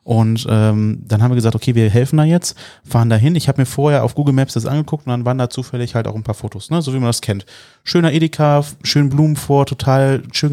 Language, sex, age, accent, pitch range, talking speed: German, male, 30-49, German, 115-135 Hz, 260 wpm